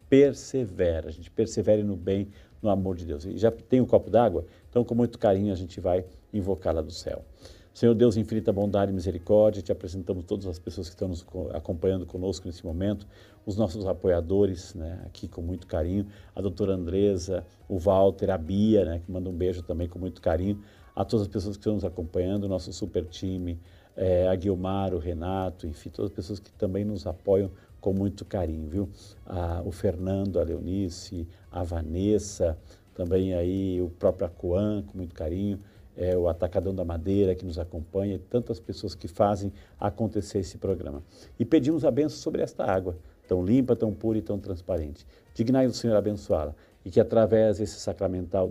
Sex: male